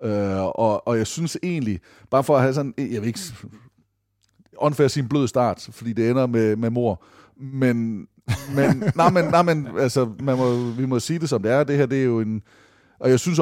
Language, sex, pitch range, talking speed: Danish, male, 105-130 Hz, 205 wpm